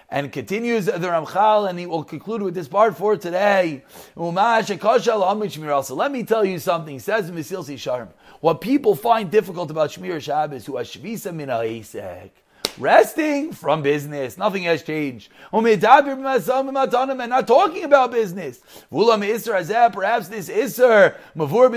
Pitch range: 180-245 Hz